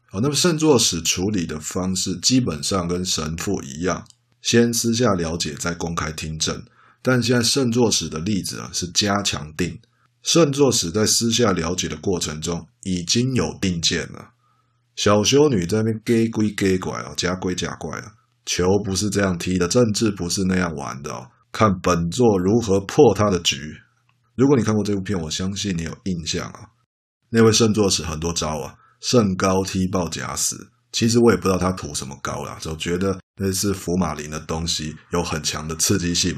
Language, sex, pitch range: Chinese, male, 85-115 Hz